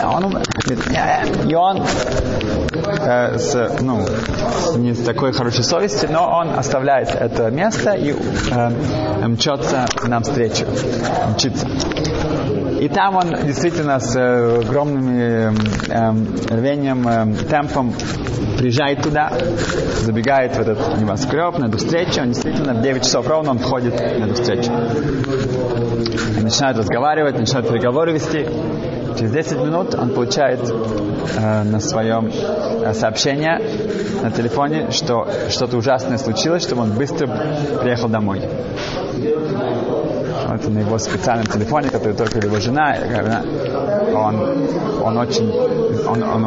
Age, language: 20-39, Russian